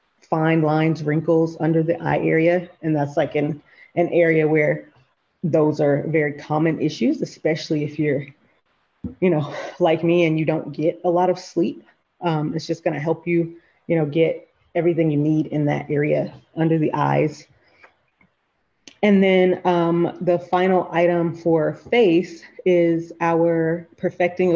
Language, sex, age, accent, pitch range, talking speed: English, female, 30-49, American, 155-170 Hz, 160 wpm